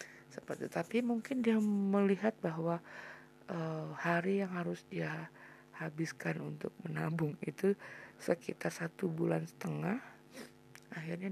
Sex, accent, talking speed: female, native, 105 wpm